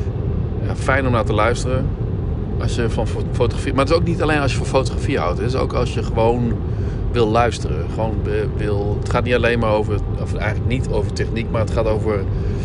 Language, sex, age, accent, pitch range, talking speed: Dutch, male, 50-69, Dutch, 100-115 Hz, 210 wpm